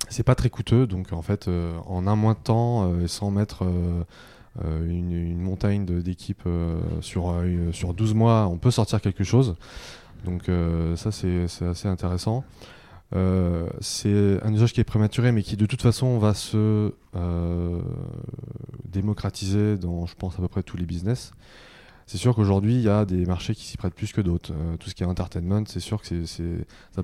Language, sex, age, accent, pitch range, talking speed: French, male, 20-39, French, 90-110 Hz, 195 wpm